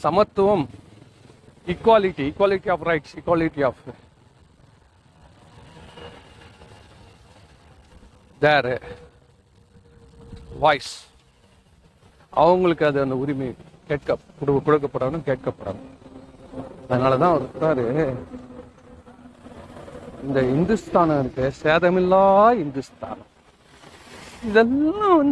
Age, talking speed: 40-59, 45 wpm